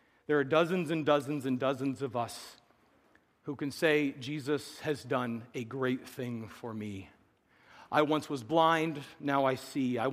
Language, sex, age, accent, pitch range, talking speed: English, male, 40-59, American, 120-145 Hz, 165 wpm